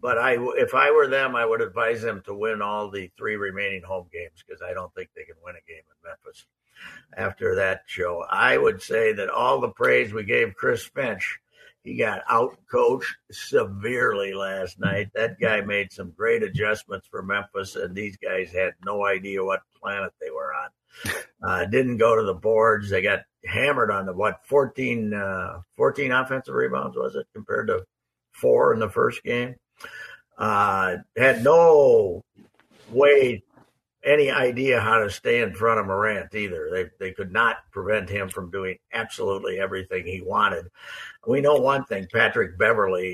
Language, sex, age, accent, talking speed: English, male, 60-79, American, 175 wpm